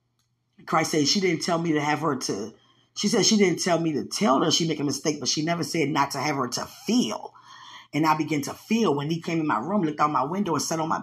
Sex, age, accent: female, 20-39, American